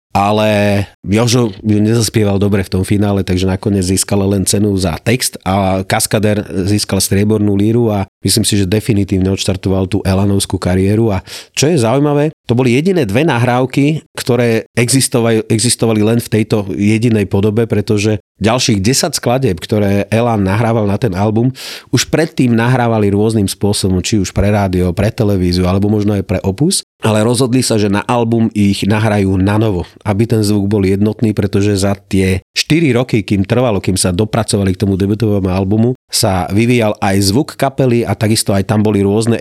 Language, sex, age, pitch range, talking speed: Slovak, male, 40-59, 100-115 Hz, 170 wpm